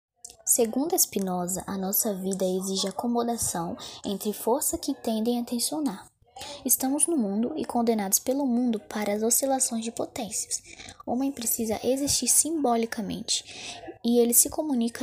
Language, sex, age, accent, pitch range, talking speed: Portuguese, female, 10-29, Brazilian, 205-255 Hz, 140 wpm